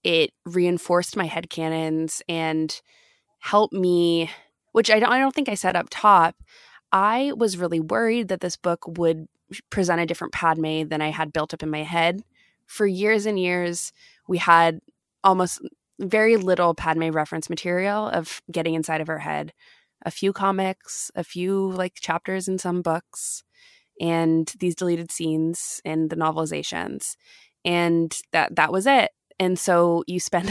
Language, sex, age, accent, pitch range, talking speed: English, female, 20-39, American, 165-195 Hz, 155 wpm